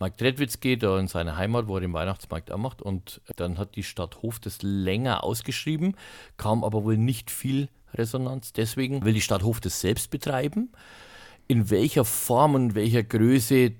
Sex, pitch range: male, 100-120 Hz